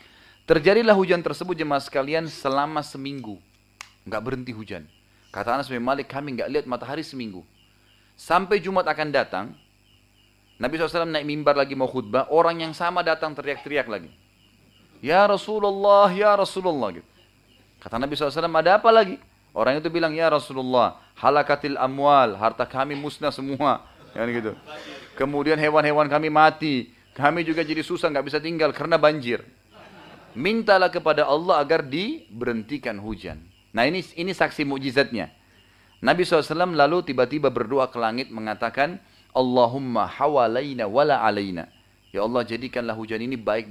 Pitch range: 110-155 Hz